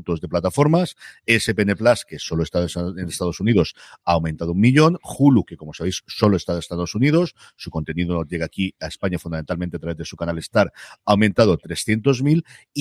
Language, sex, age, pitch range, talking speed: Spanish, male, 50-69, 90-130 Hz, 185 wpm